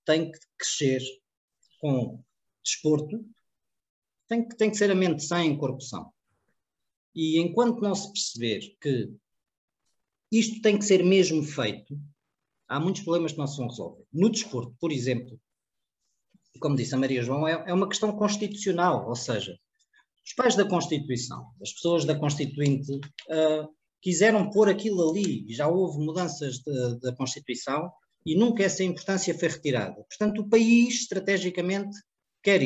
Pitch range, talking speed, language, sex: 145-205 Hz, 140 wpm, Portuguese, male